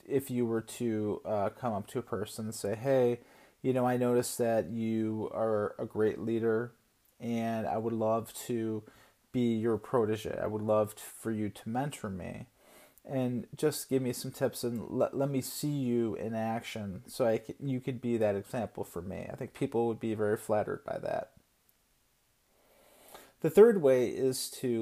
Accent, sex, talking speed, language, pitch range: American, male, 190 wpm, English, 110-130 Hz